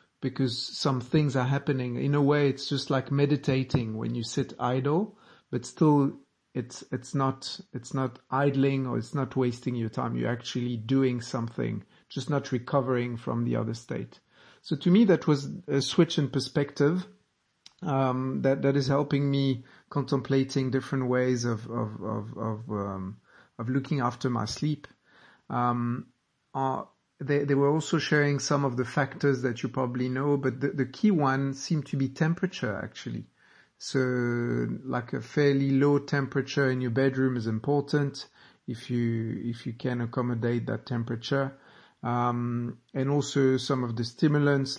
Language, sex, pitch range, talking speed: English, male, 120-140 Hz, 160 wpm